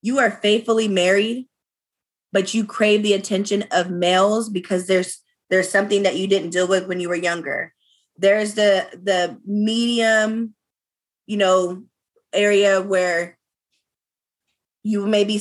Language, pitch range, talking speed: English, 195-300 Hz, 135 wpm